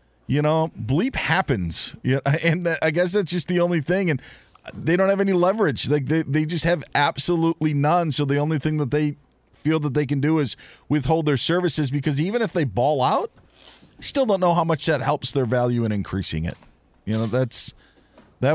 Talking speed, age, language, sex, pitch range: 210 wpm, 40-59, English, male, 110-150 Hz